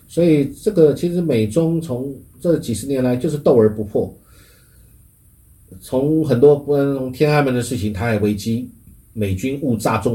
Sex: male